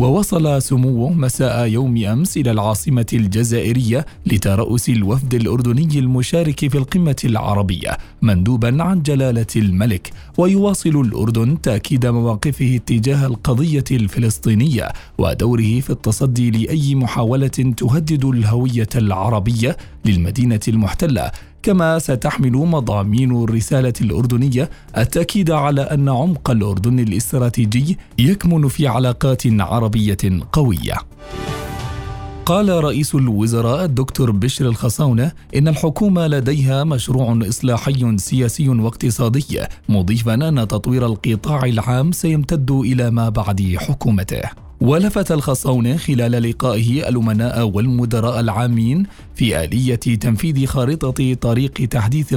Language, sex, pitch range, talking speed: Arabic, male, 115-145 Hz, 100 wpm